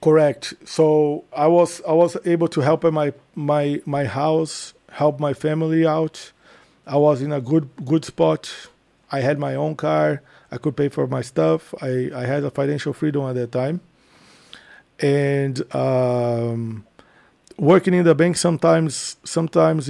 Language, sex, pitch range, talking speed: English, male, 140-160 Hz, 155 wpm